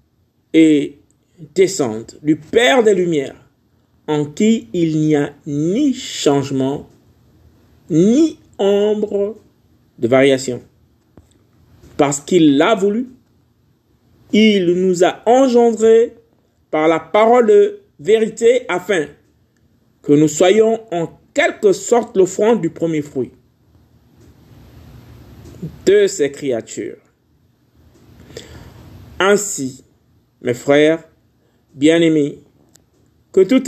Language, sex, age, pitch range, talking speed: French, male, 50-69, 125-190 Hz, 90 wpm